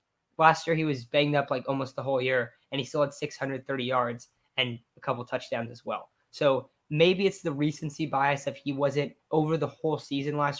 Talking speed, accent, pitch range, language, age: 210 wpm, American, 130-150 Hz, English, 10-29